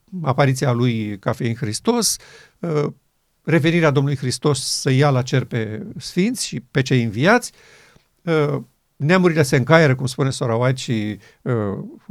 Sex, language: male, Romanian